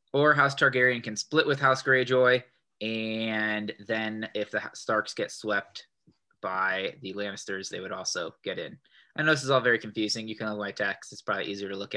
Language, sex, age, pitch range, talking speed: English, male, 20-39, 105-130 Hz, 195 wpm